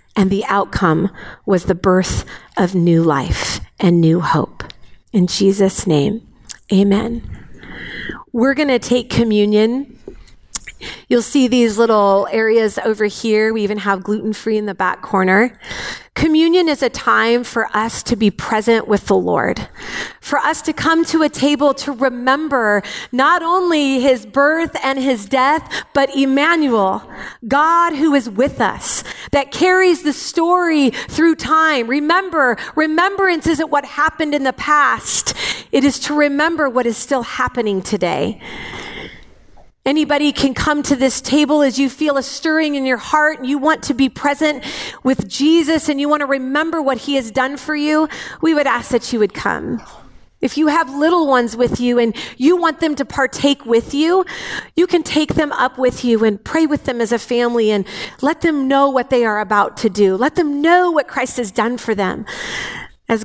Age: 40-59